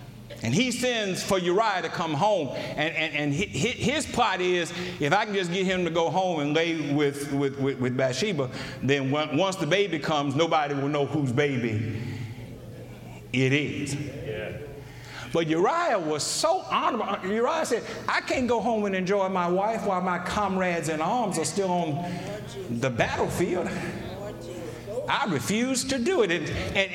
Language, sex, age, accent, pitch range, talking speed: English, male, 50-69, American, 130-205 Hz, 165 wpm